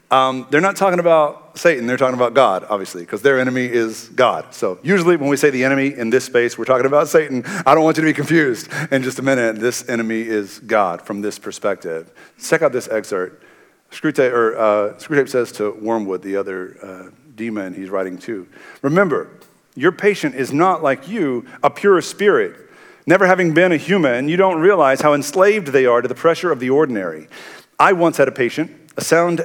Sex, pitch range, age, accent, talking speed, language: male, 115-150 Hz, 50-69, American, 200 wpm, English